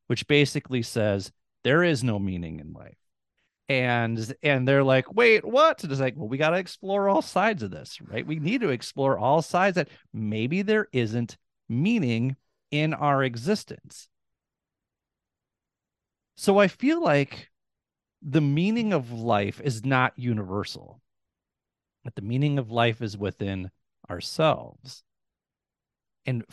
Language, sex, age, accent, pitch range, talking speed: English, male, 30-49, American, 105-145 Hz, 140 wpm